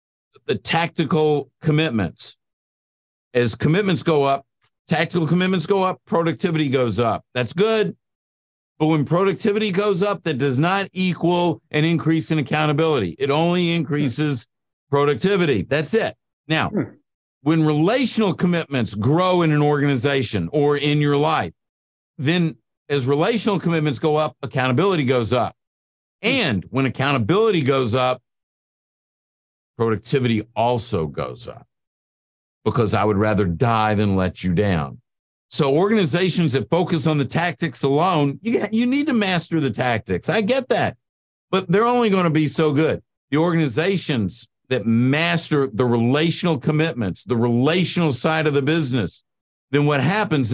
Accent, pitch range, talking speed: American, 120-170 Hz, 135 wpm